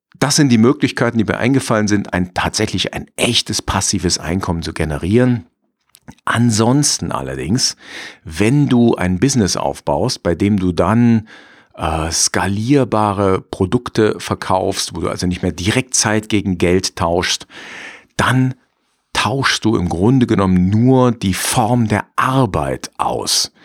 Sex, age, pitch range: male, 50-69, 90-120 Hz